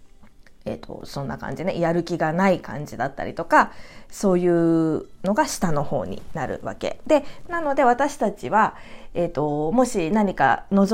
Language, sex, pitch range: Japanese, female, 170-275 Hz